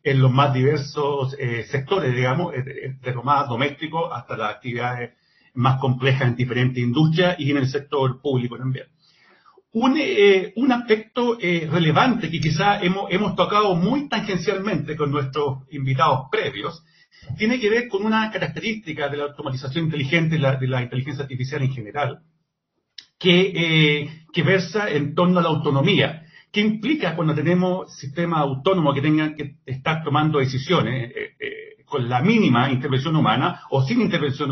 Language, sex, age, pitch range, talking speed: Spanish, male, 50-69, 135-180 Hz, 160 wpm